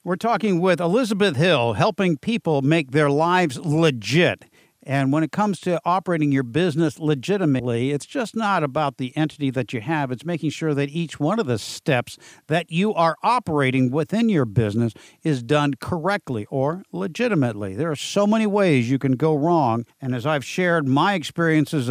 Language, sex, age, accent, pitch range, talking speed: English, male, 50-69, American, 135-175 Hz, 180 wpm